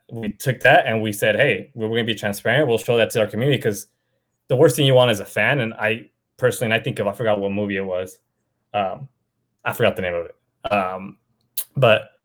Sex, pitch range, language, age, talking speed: male, 105-125 Hz, English, 20-39, 240 wpm